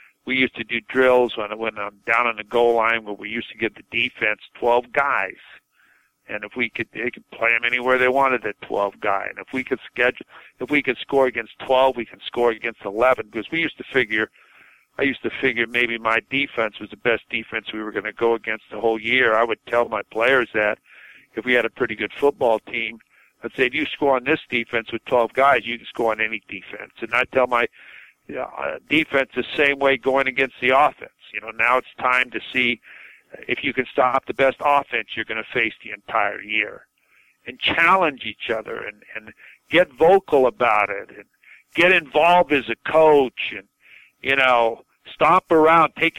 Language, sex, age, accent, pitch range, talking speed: English, male, 50-69, American, 115-140 Hz, 210 wpm